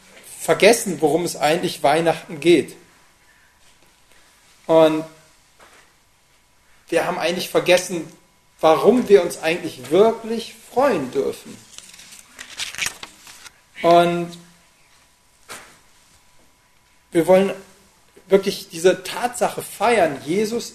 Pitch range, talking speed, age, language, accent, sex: 160-195 Hz, 75 wpm, 40-59, German, German, male